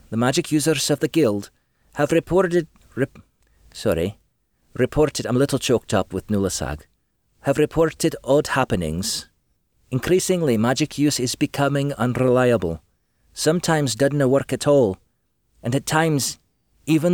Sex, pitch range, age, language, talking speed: male, 100-140 Hz, 40-59, English, 130 wpm